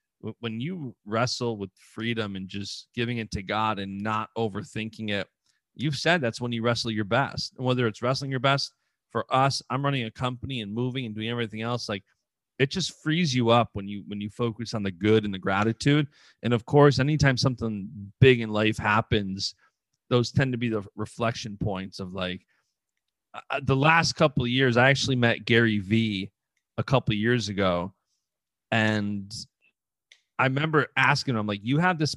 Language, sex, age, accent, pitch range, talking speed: English, male, 30-49, American, 110-135 Hz, 190 wpm